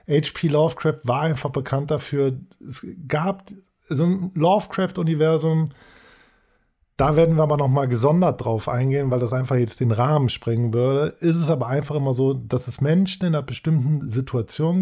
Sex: male